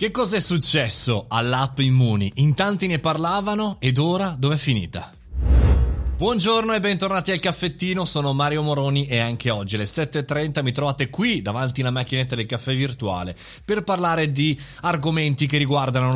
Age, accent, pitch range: 30-49, native, 115-155 Hz